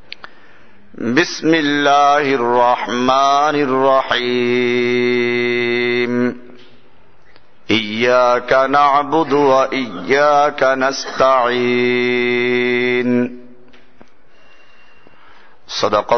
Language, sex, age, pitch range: Bengali, male, 50-69, 120-140 Hz